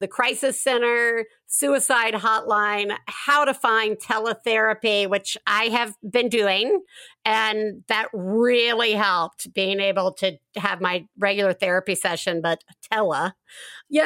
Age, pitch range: 50-69, 195-245 Hz